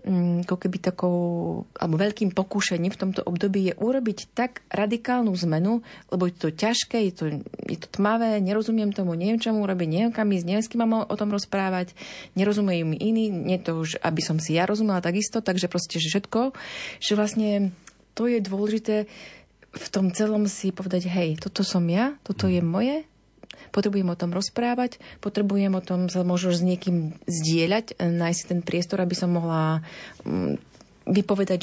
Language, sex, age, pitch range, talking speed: Slovak, female, 30-49, 180-220 Hz, 170 wpm